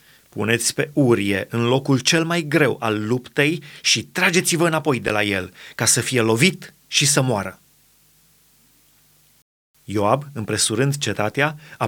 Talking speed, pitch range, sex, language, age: 140 wpm, 120-155 Hz, male, Romanian, 30-49